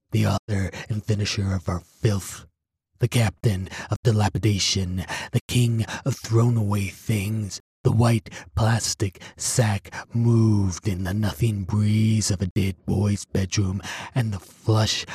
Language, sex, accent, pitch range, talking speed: English, male, American, 95-110 Hz, 135 wpm